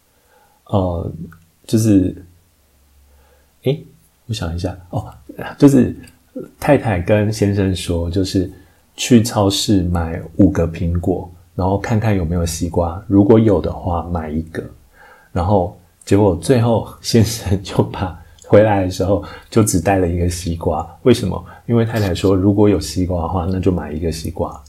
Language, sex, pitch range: Chinese, male, 85-110 Hz